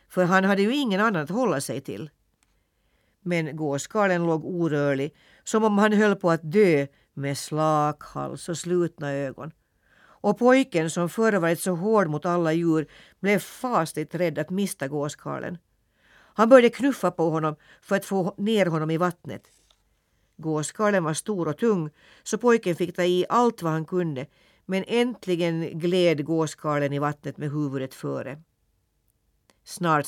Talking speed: 155 wpm